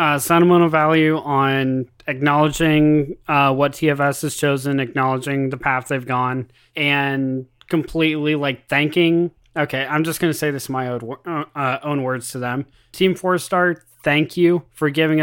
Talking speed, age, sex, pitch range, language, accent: 160 wpm, 20-39, male, 130-155 Hz, English, American